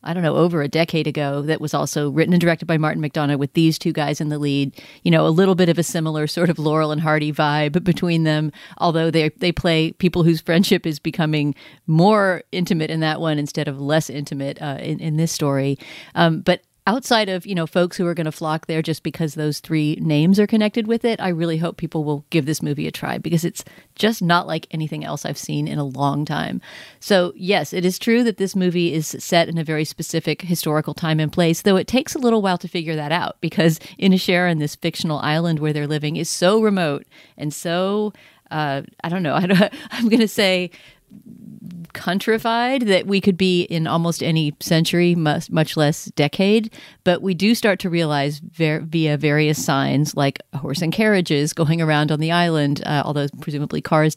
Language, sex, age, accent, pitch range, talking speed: English, female, 40-59, American, 150-180 Hz, 210 wpm